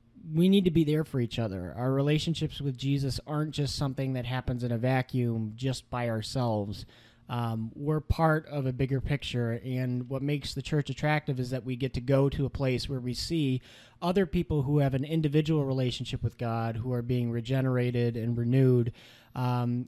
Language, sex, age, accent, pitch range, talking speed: English, male, 30-49, American, 125-145 Hz, 195 wpm